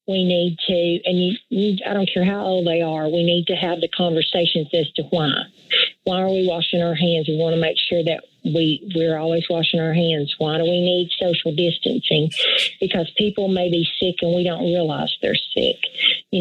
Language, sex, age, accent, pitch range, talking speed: English, female, 40-59, American, 165-185 Hz, 215 wpm